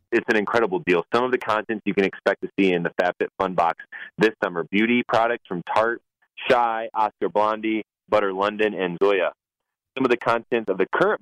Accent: American